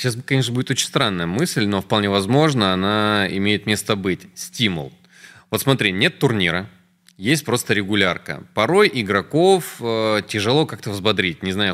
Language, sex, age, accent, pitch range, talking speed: Russian, male, 20-39, native, 105-140 Hz, 150 wpm